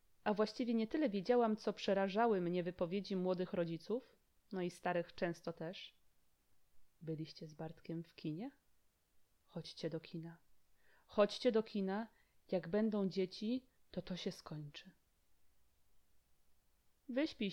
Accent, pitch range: native, 175-230 Hz